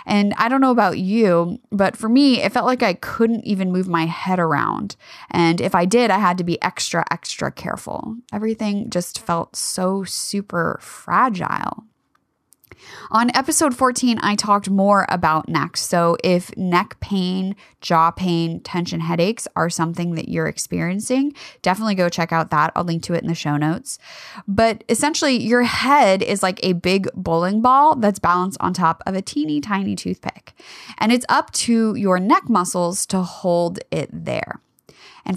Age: 20-39